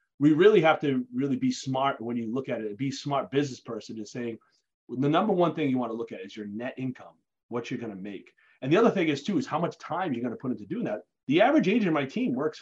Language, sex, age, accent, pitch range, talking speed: English, male, 30-49, American, 125-160 Hz, 295 wpm